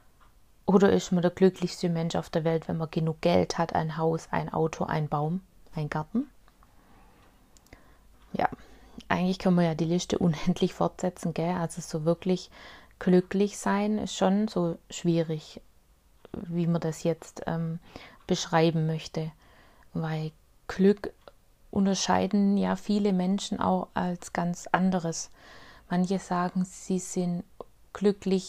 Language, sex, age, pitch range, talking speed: German, female, 30-49, 170-185 Hz, 135 wpm